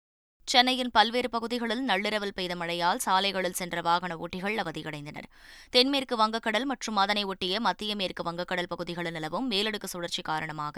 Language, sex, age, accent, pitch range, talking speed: Tamil, female, 20-39, native, 175-220 Hz, 135 wpm